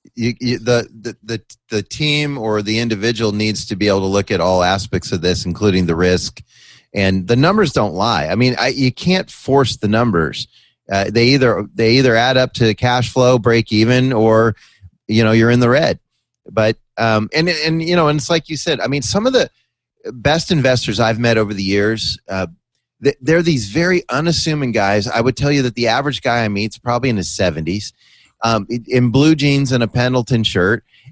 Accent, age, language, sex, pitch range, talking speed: American, 30-49, English, male, 105-130 Hz, 210 wpm